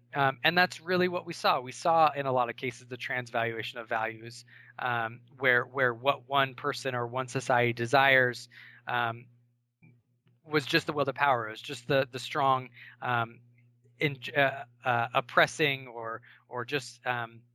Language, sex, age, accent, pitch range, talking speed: English, male, 20-39, American, 120-150 Hz, 170 wpm